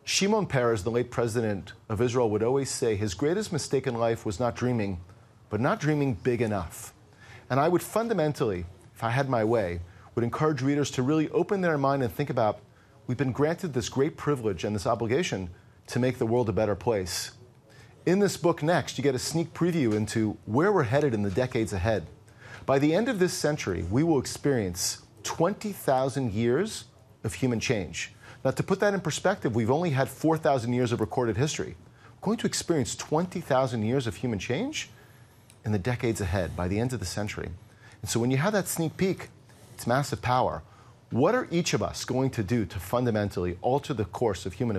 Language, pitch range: English, 110-140 Hz